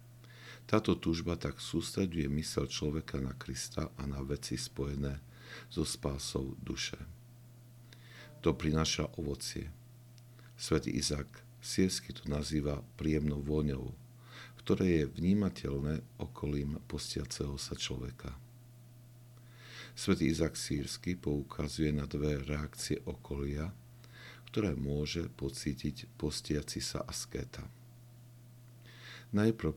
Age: 50-69